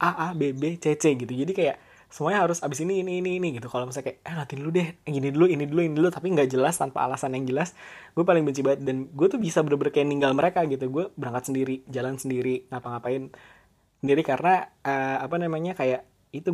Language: Indonesian